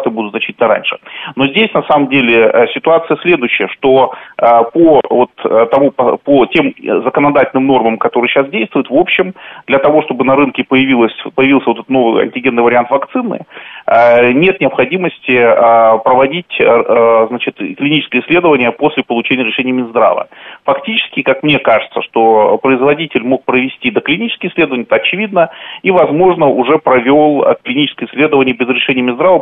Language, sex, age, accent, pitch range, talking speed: Russian, male, 30-49, native, 125-150 Hz, 135 wpm